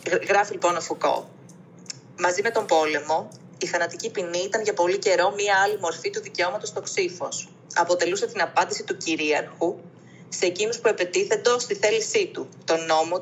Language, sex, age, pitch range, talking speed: Greek, female, 20-39, 165-205 Hz, 165 wpm